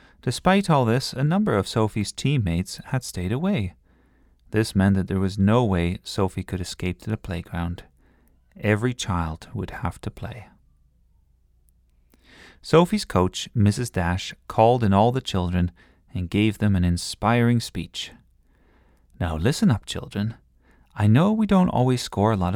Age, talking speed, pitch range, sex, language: 40-59, 150 wpm, 85-125 Hz, male, English